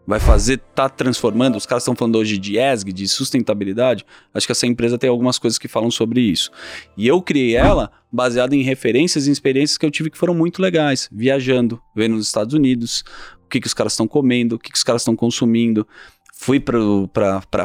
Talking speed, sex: 205 wpm, male